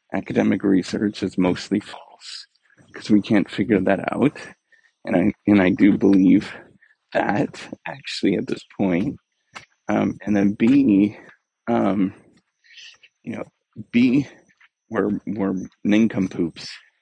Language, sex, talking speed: English, male, 120 wpm